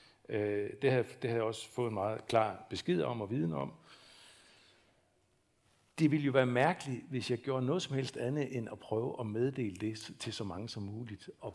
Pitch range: 105-140 Hz